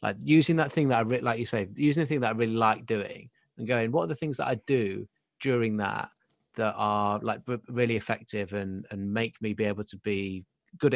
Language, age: English, 30-49